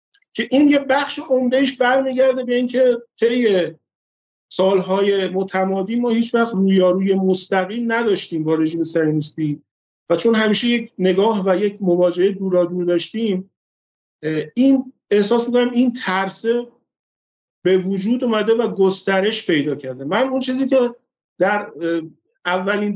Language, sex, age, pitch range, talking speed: Persian, male, 50-69, 195-260 Hz, 125 wpm